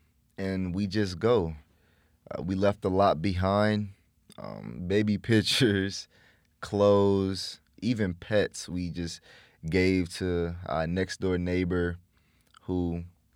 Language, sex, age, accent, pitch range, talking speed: English, male, 20-39, American, 85-100 Hz, 110 wpm